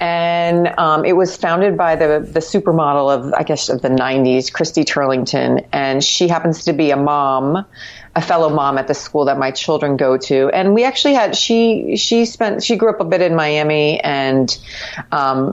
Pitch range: 140-180 Hz